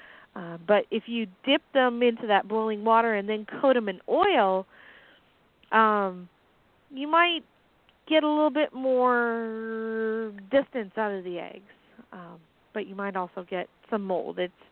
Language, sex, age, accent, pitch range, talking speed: English, female, 30-49, American, 205-255 Hz, 155 wpm